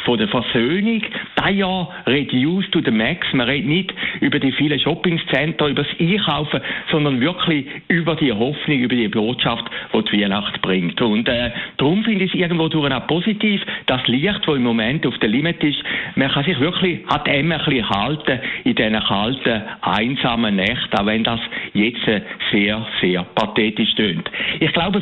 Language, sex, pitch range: German, male, 120-170 Hz